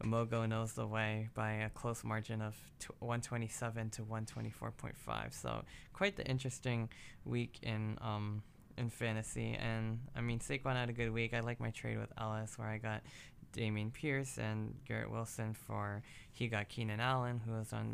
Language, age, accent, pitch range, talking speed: English, 20-39, American, 110-120 Hz, 170 wpm